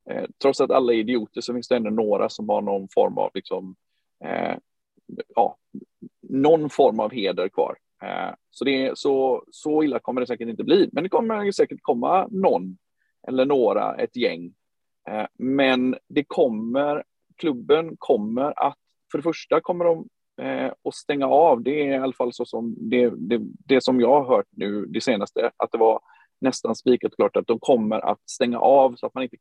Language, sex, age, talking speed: Swedish, male, 30-49, 190 wpm